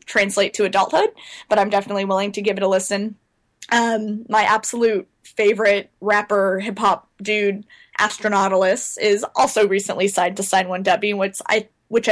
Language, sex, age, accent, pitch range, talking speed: English, female, 10-29, American, 195-215 Hz, 160 wpm